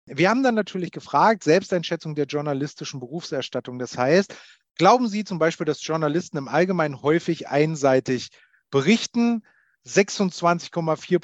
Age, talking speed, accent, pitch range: 30-49, 125 wpm, German, 145-190 Hz